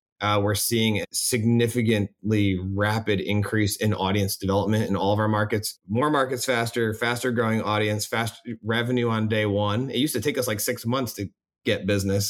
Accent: American